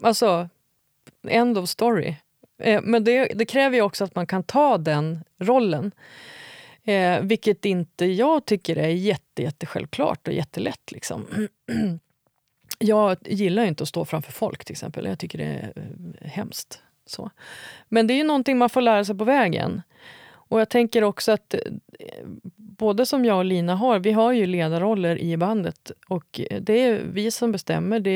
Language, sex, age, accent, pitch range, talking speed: Swedish, female, 30-49, native, 175-225 Hz, 165 wpm